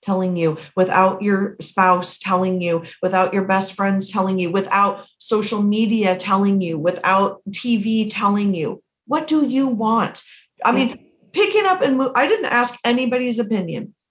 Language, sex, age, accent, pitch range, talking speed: English, female, 40-59, American, 185-235 Hz, 155 wpm